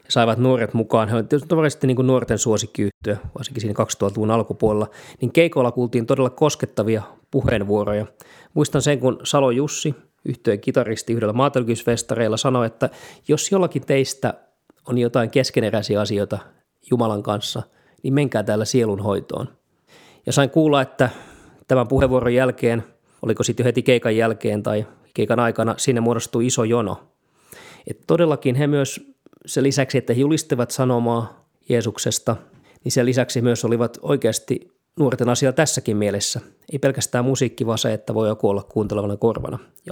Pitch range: 110-130 Hz